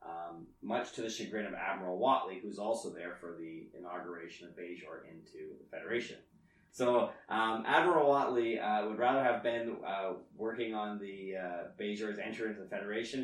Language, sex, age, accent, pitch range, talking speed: English, male, 30-49, American, 95-125 Hz, 170 wpm